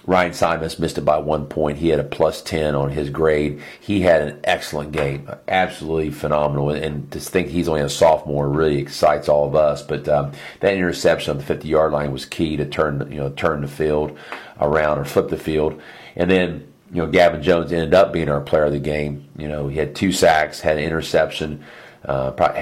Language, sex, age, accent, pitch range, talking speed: English, male, 40-59, American, 75-80 Hz, 215 wpm